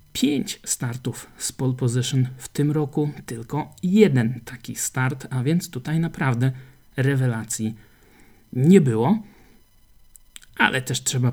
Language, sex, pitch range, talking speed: Polish, male, 120-150 Hz, 115 wpm